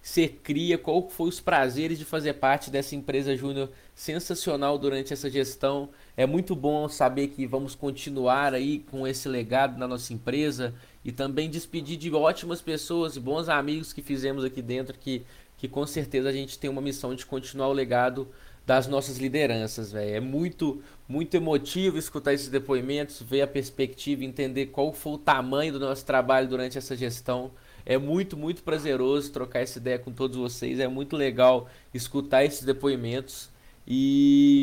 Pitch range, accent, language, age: 130-150 Hz, Brazilian, Portuguese, 20-39